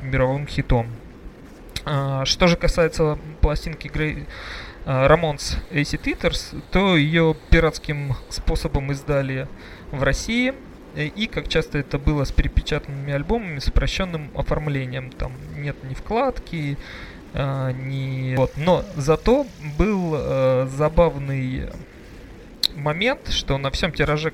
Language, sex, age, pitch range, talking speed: Russian, male, 20-39, 135-160 Hz, 115 wpm